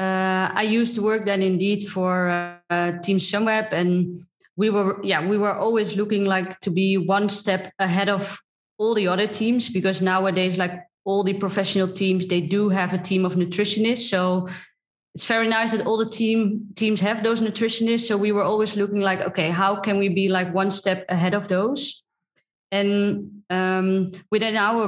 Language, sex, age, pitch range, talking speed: English, female, 20-39, 180-205 Hz, 190 wpm